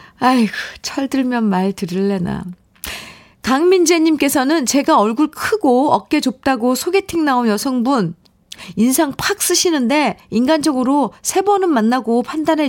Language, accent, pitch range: Korean, native, 195-285 Hz